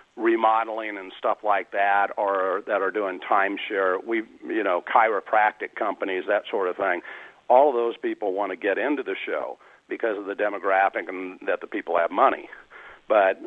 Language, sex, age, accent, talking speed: English, male, 60-79, American, 180 wpm